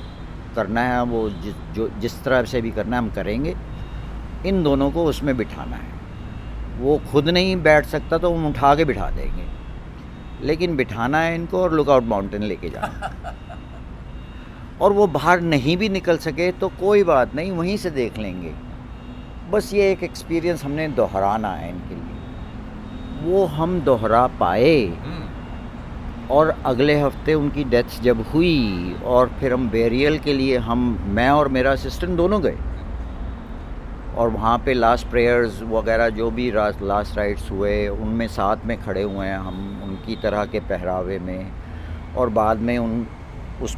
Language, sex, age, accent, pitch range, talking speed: Hindi, male, 60-79, native, 95-140 Hz, 160 wpm